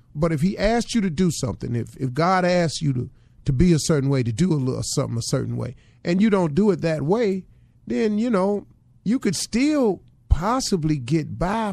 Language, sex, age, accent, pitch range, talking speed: English, male, 40-59, American, 125-180 Hz, 220 wpm